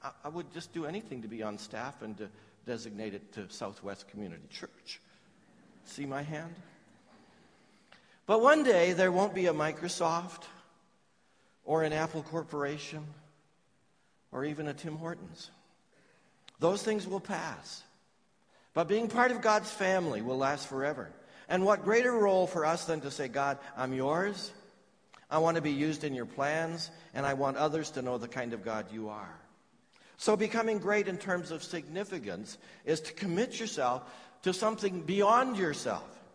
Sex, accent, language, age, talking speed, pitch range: male, American, English, 60-79, 160 wpm, 130-185 Hz